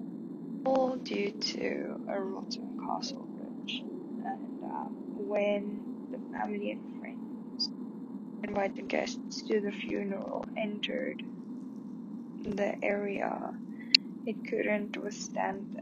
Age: 10-29